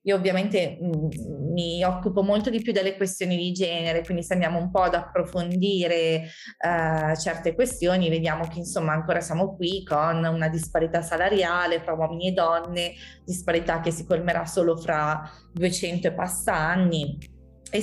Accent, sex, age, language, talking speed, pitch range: native, female, 20-39, Italian, 155 wpm, 170-200 Hz